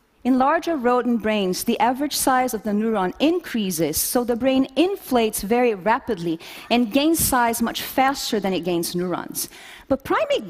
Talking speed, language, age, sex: 160 wpm, English, 40-59, female